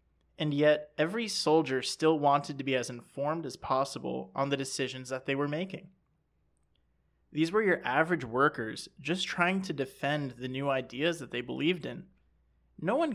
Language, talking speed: English, 170 wpm